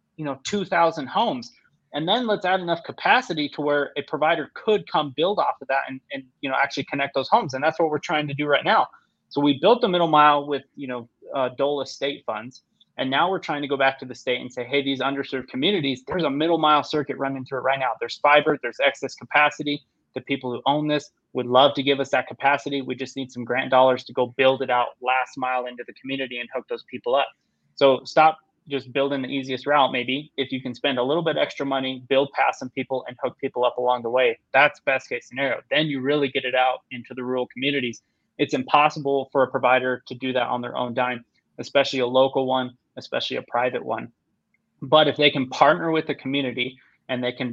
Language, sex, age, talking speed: English, male, 20-39, 235 wpm